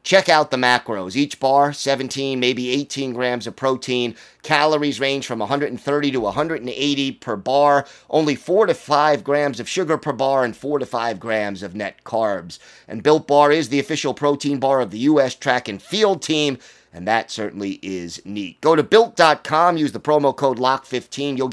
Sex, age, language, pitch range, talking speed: male, 30-49, English, 120-150 Hz, 185 wpm